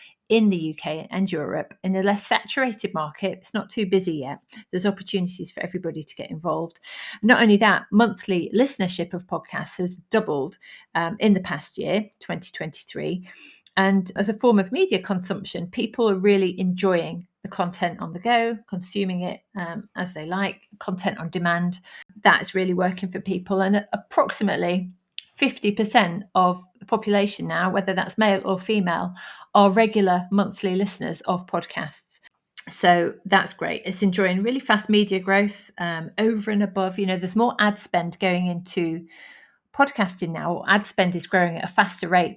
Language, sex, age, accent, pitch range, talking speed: English, female, 40-59, British, 180-210 Hz, 165 wpm